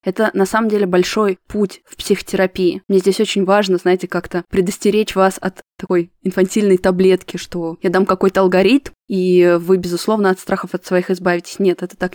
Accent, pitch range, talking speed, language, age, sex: native, 180-200 Hz, 180 wpm, Russian, 20-39, female